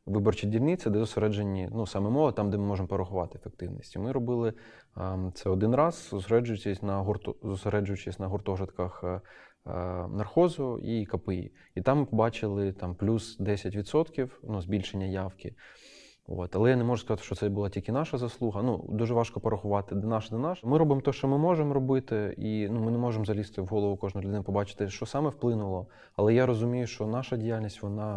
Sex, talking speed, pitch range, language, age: male, 185 wpm, 95-115 Hz, Ukrainian, 20-39